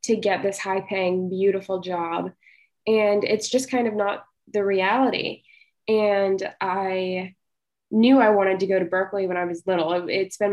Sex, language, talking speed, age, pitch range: female, English, 170 wpm, 10-29, 185-220 Hz